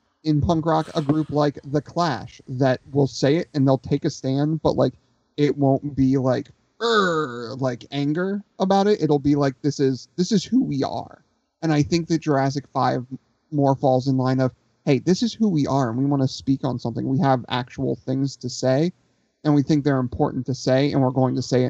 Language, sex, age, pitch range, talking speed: English, male, 30-49, 130-155 Hz, 220 wpm